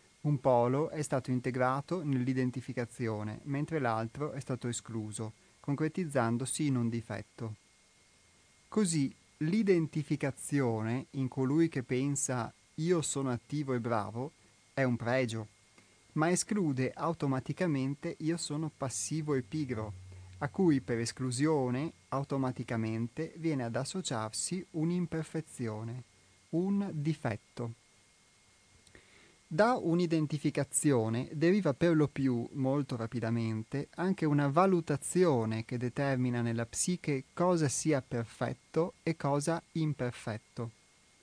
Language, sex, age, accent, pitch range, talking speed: Italian, male, 30-49, native, 120-155 Hz, 100 wpm